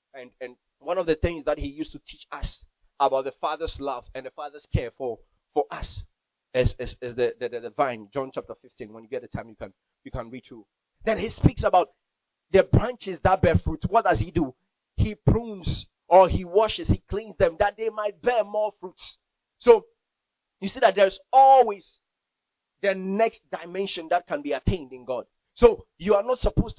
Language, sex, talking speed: English, male, 205 wpm